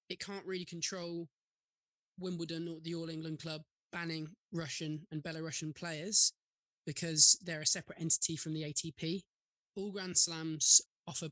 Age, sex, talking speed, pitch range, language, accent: 20-39, male, 145 wpm, 150-170 Hz, English, British